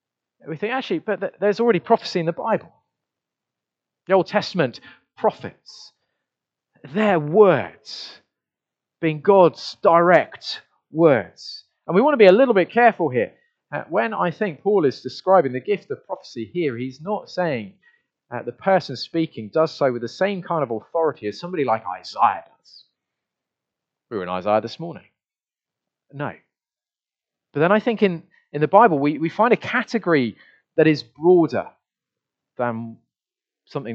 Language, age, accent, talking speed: English, 30-49, British, 150 wpm